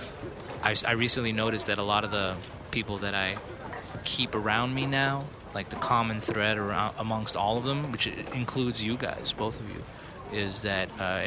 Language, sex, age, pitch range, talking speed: English, male, 20-39, 100-115 Hz, 185 wpm